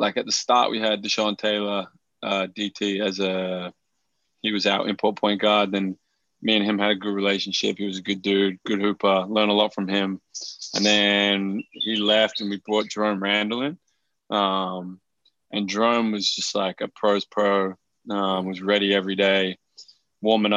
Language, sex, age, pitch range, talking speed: English, male, 20-39, 95-105 Hz, 185 wpm